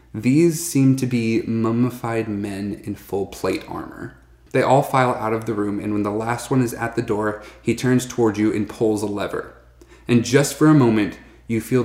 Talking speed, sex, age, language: 210 wpm, male, 30-49, English